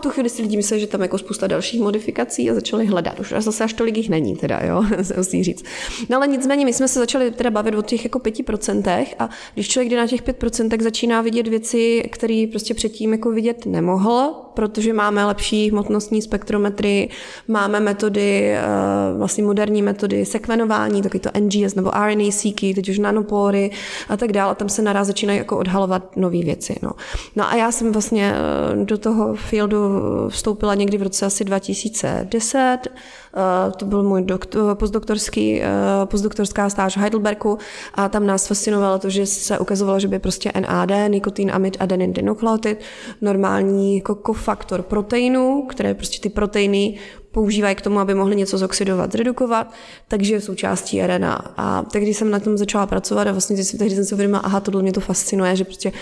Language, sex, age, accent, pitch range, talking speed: Czech, female, 20-39, native, 195-220 Hz, 180 wpm